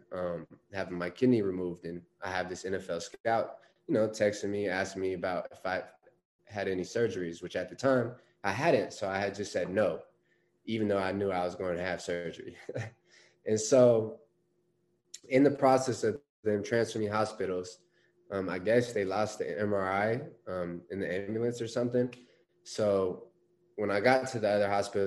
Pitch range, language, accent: 95-115 Hz, English, American